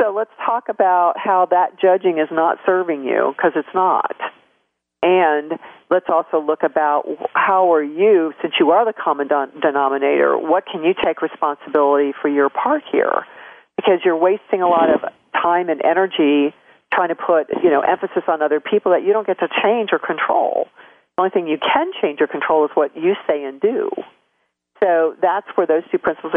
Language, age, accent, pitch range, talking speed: English, 50-69, American, 145-185 Hz, 190 wpm